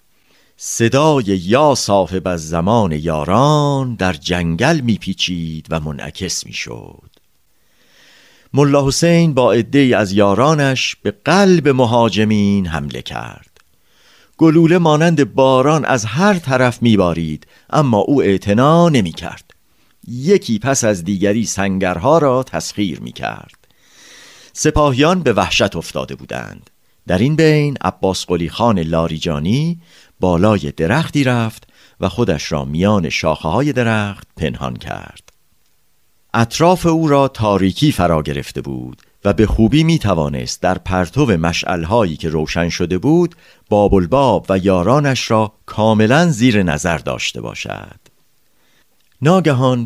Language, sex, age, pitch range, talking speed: Persian, male, 50-69, 85-140 Hz, 115 wpm